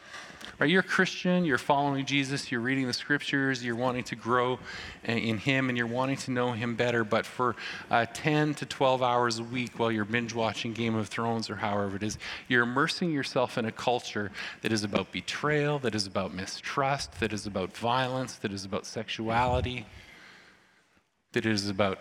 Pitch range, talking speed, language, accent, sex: 105-130 Hz, 185 wpm, English, American, male